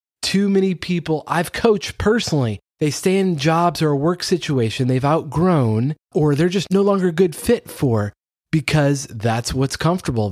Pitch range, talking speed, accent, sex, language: 130-180 Hz, 170 wpm, American, male, English